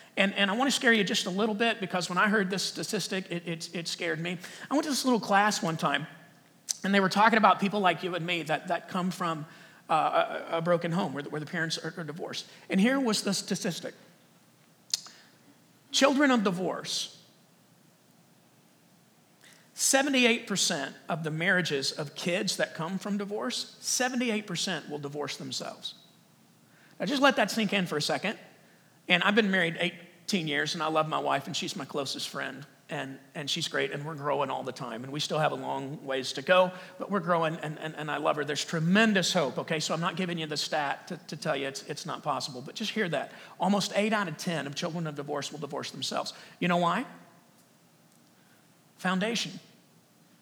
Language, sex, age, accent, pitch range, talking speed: English, male, 40-59, American, 165-210 Hz, 200 wpm